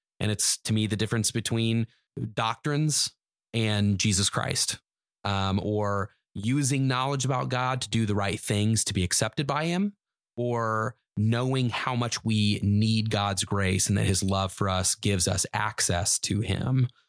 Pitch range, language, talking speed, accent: 100-120 Hz, English, 160 wpm, American